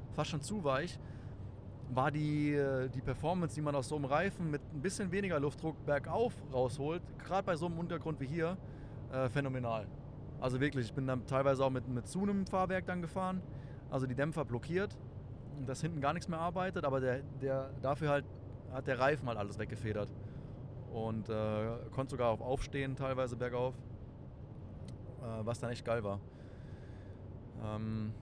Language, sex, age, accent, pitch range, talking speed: German, male, 20-39, German, 115-135 Hz, 175 wpm